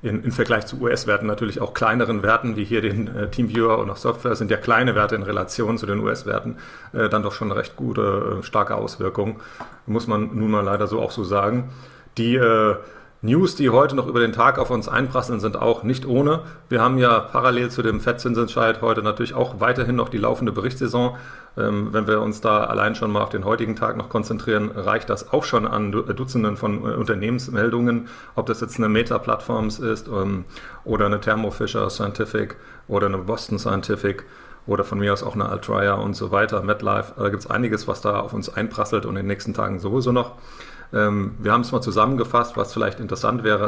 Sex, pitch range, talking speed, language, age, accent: male, 105-120 Hz, 200 wpm, German, 40-59, German